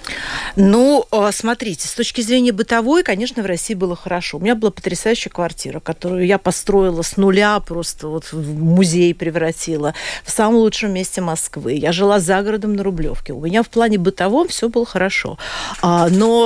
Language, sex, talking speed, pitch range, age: Russian, female, 170 wpm, 170-220 Hz, 40-59